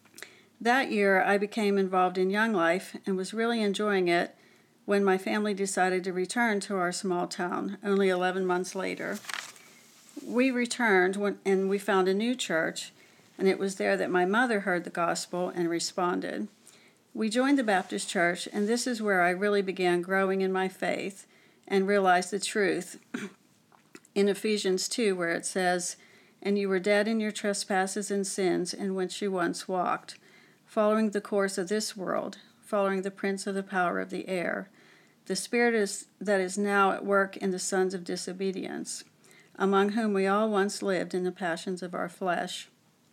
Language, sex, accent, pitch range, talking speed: English, female, American, 185-205 Hz, 175 wpm